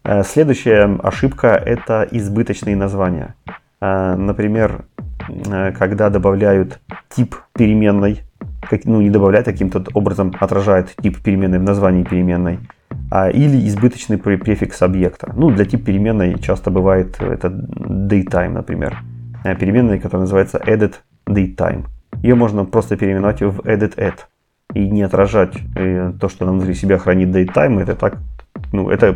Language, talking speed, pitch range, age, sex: Russian, 125 wpm, 95-110 Hz, 30-49, male